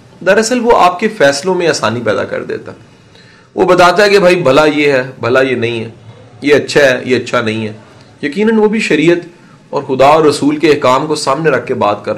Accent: Indian